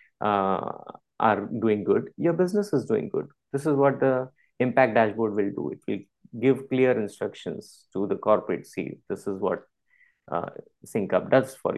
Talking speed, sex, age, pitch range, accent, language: 170 wpm, male, 20-39, 110-140 Hz, Indian, English